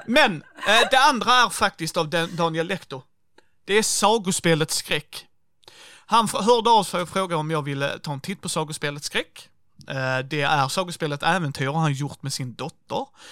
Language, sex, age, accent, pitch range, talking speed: Swedish, male, 30-49, native, 140-175 Hz, 160 wpm